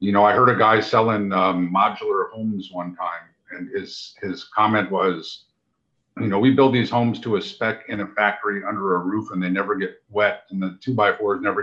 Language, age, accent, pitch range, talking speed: English, 50-69, American, 95-115 Hz, 220 wpm